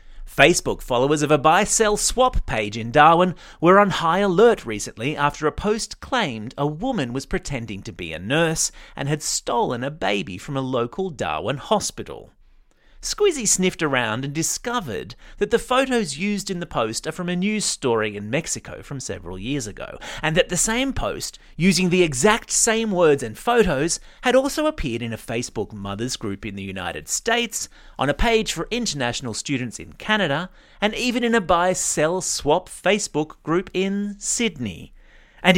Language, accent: English, Australian